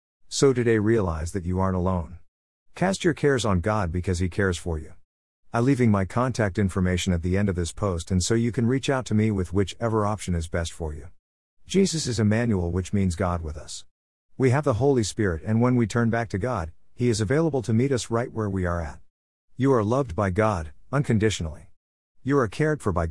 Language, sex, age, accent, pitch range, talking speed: English, male, 50-69, American, 85-115 Hz, 220 wpm